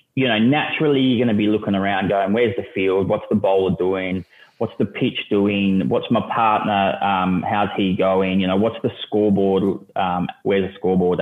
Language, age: English, 20-39